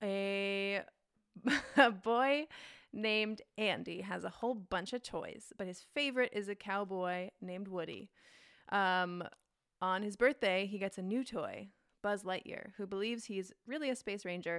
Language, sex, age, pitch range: English, female, 20-39, 180-215 Hz